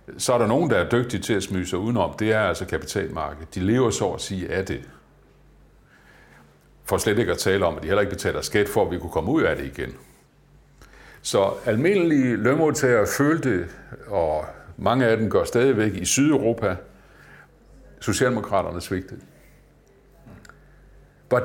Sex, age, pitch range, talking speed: male, 60-79, 100-130 Hz, 165 wpm